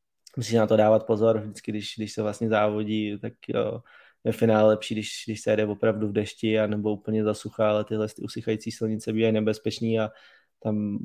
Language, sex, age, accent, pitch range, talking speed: Czech, male, 20-39, native, 105-115 Hz, 190 wpm